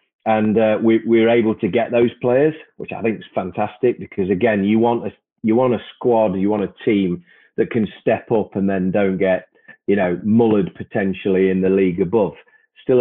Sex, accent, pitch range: male, British, 95-110 Hz